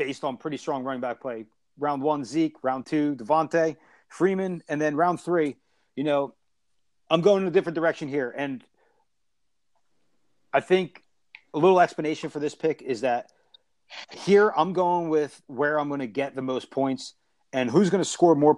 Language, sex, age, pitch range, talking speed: English, male, 40-59, 135-160 Hz, 180 wpm